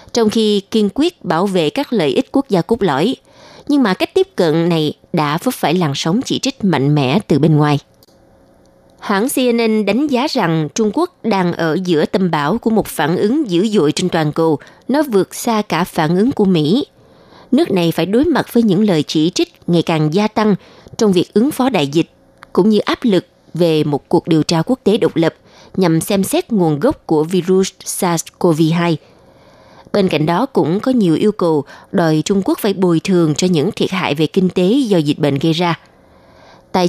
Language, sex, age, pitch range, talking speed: Vietnamese, female, 20-39, 165-225 Hz, 210 wpm